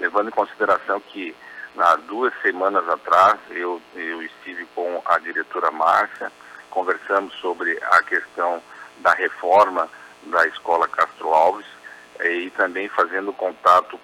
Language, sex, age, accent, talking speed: Portuguese, male, 50-69, Brazilian, 125 wpm